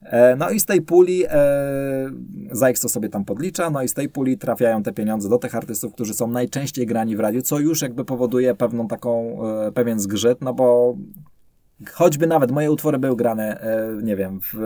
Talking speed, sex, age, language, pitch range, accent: 200 wpm, male, 20-39, Polish, 100-125 Hz, native